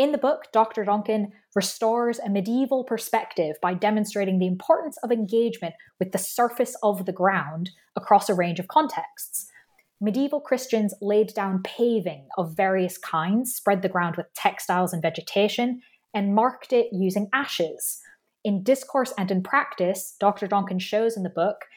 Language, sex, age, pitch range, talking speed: English, female, 20-39, 180-235 Hz, 155 wpm